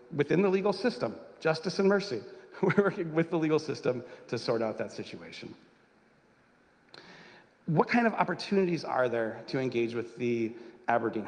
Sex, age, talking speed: male, 40-59, 155 wpm